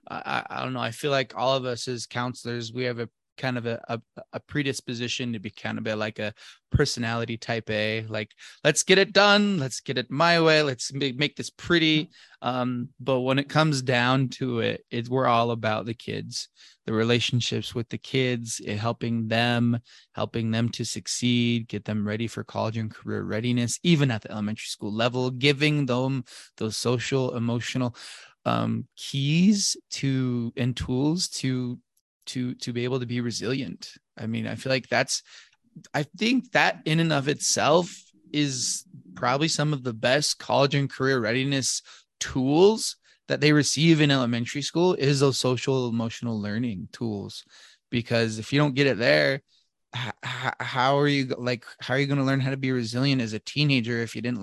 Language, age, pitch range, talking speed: English, 20-39, 115-140 Hz, 185 wpm